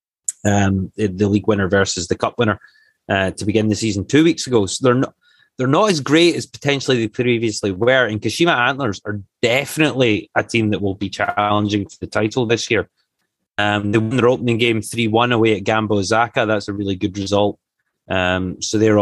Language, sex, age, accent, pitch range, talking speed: English, male, 30-49, British, 100-120 Hz, 200 wpm